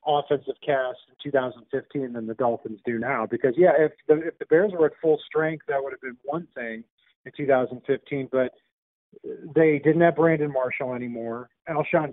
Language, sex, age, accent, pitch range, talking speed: English, male, 40-59, American, 130-165 Hz, 180 wpm